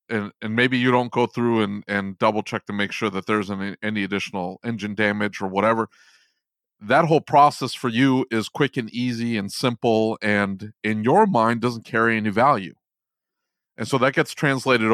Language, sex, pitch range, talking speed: English, male, 105-125 Hz, 190 wpm